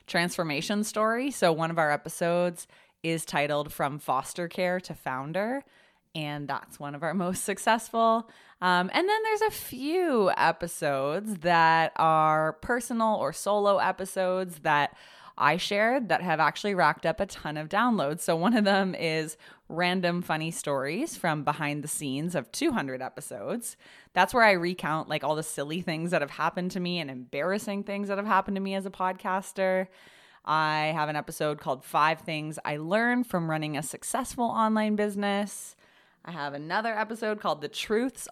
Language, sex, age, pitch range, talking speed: English, female, 20-39, 155-210 Hz, 170 wpm